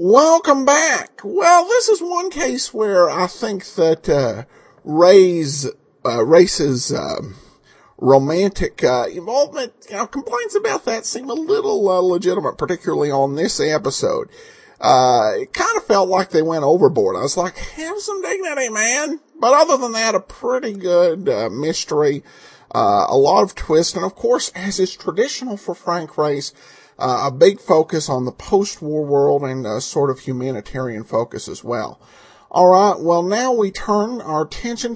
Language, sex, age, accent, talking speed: English, male, 50-69, American, 165 wpm